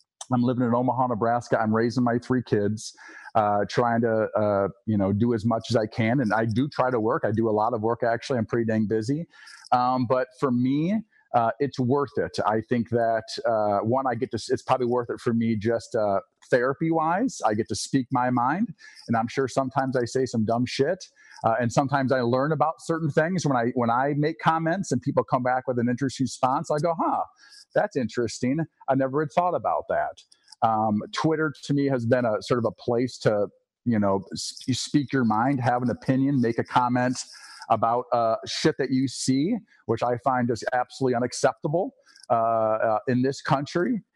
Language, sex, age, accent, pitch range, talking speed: English, male, 40-59, American, 115-150 Hz, 210 wpm